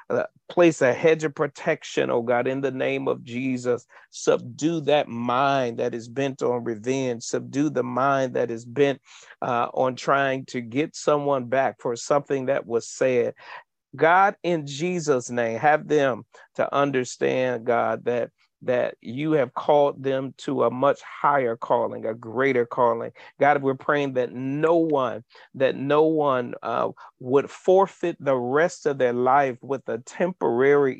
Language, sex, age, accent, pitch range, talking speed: English, male, 40-59, American, 125-150 Hz, 155 wpm